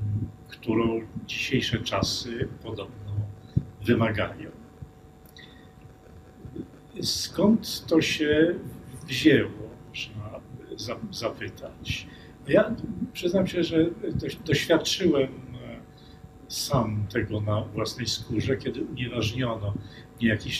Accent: native